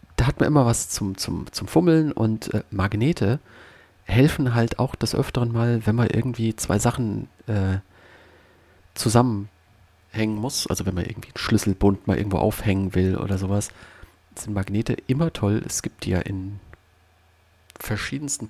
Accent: German